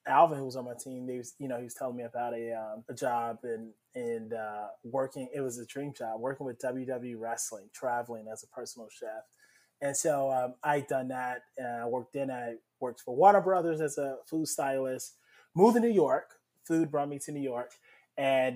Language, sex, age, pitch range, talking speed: English, male, 20-39, 120-150 Hz, 215 wpm